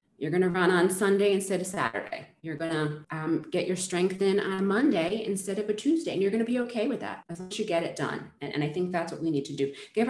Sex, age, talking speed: female, 30-49, 290 wpm